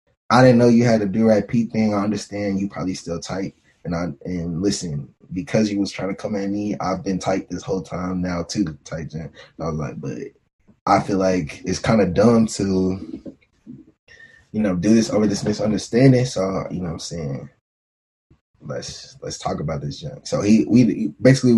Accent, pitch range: American, 90-115 Hz